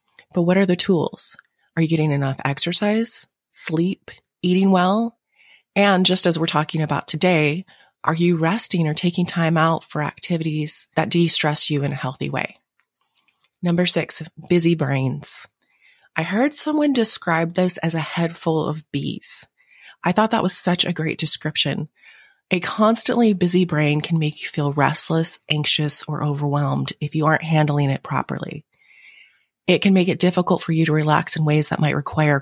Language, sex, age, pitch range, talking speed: English, female, 30-49, 150-185 Hz, 170 wpm